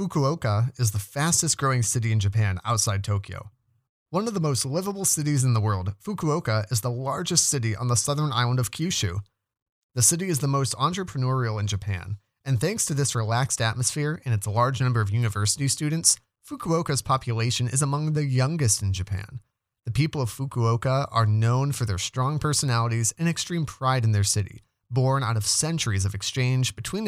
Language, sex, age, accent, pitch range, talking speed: English, male, 30-49, American, 105-135 Hz, 180 wpm